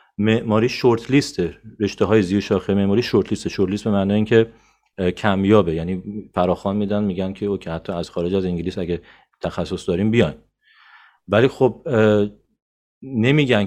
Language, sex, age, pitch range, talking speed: Persian, male, 40-59, 90-110 Hz, 145 wpm